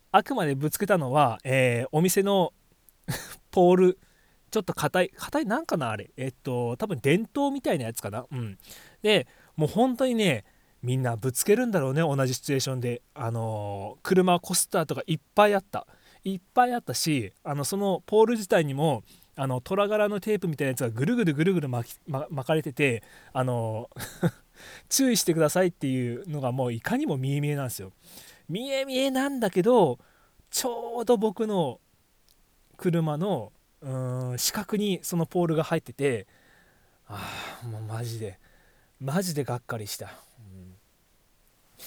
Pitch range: 125-180 Hz